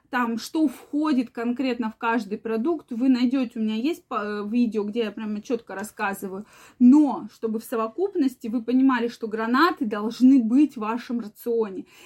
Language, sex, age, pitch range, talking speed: Russian, female, 20-39, 215-260 Hz, 155 wpm